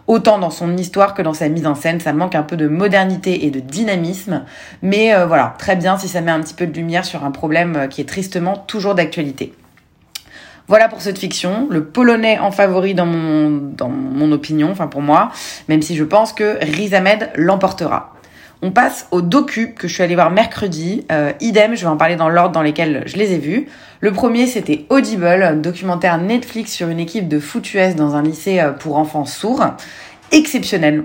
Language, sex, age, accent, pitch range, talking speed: French, female, 30-49, French, 150-200 Hz, 205 wpm